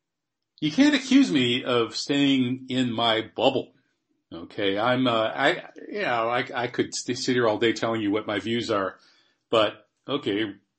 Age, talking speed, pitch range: 40-59, 160 wpm, 105-150 Hz